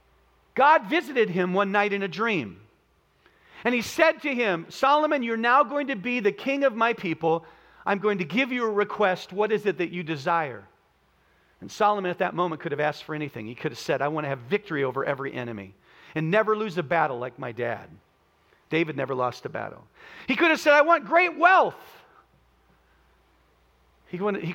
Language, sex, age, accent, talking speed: English, male, 50-69, American, 200 wpm